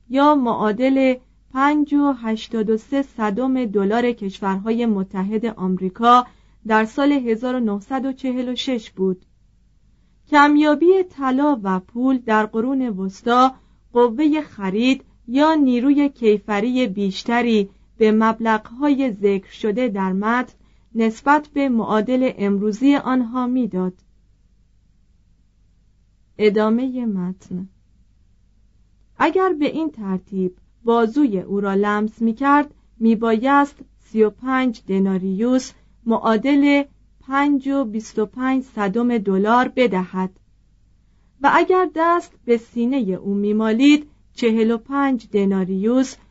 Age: 40-59